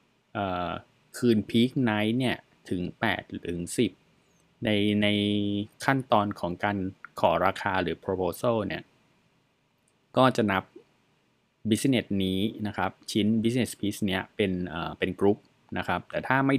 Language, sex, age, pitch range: Thai, male, 20-39, 90-115 Hz